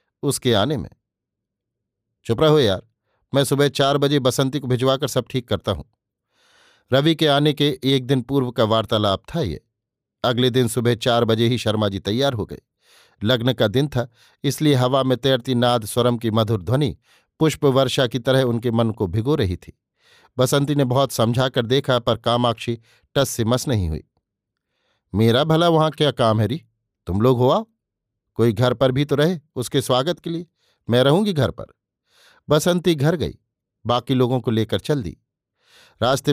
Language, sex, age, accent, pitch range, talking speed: Hindi, male, 50-69, native, 115-140 Hz, 180 wpm